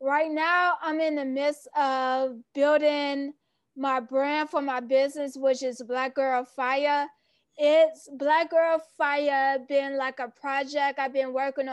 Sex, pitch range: female, 270-310 Hz